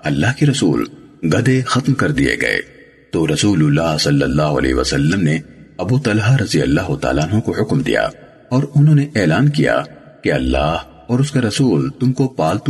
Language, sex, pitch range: Urdu, male, 100-135 Hz